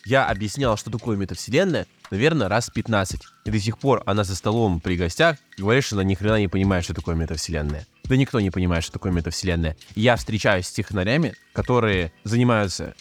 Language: Russian